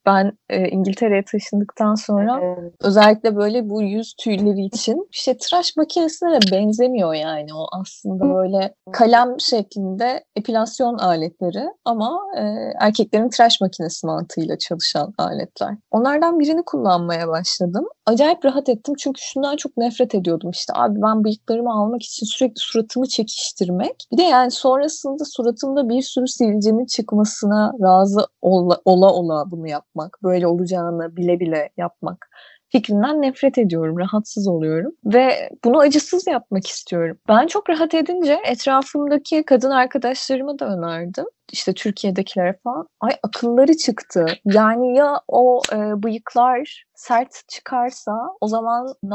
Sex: female